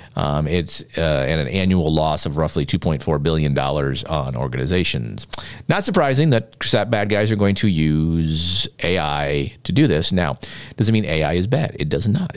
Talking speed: 170 wpm